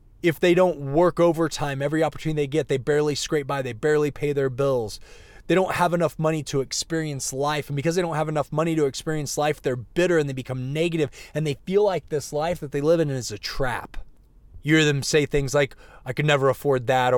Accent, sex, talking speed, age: American, male, 230 wpm, 20-39